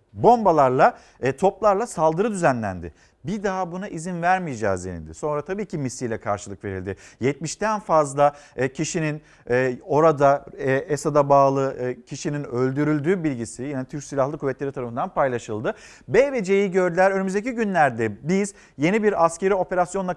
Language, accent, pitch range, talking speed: Turkish, native, 145-190 Hz, 125 wpm